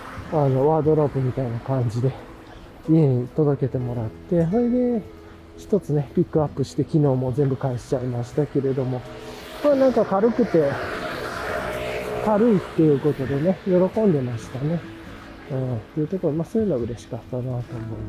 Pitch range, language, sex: 125-190 Hz, Japanese, male